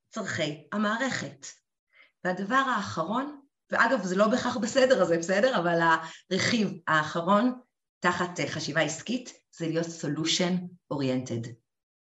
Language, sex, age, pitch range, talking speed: Hebrew, female, 30-49, 175-280 Hz, 110 wpm